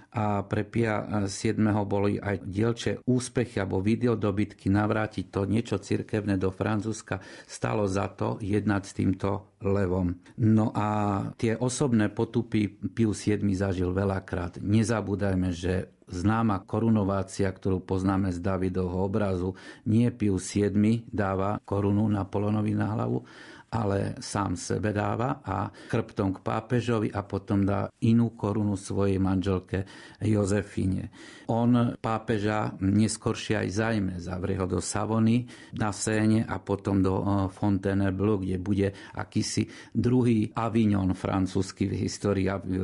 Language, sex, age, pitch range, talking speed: Slovak, male, 50-69, 95-110 Hz, 125 wpm